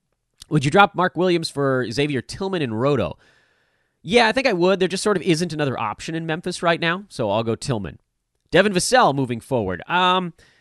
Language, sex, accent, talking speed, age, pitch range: English, male, American, 200 wpm, 30-49, 100-165 Hz